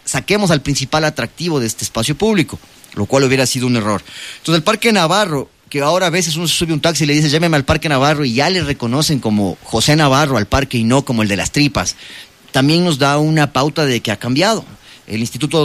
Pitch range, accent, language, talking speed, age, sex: 125-165 Hz, Mexican, English, 235 wpm, 30-49, male